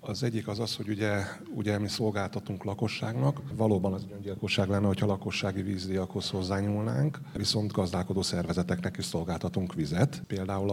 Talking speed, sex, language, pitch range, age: 140 wpm, male, Hungarian, 90-110 Hz, 30-49